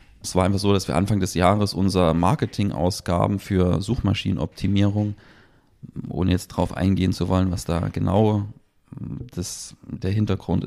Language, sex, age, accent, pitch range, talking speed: German, male, 30-49, German, 90-100 Hz, 140 wpm